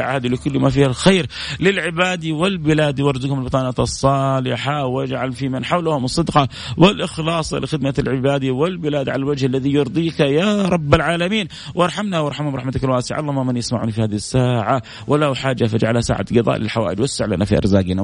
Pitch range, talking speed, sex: 135-185 Hz, 155 wpm, male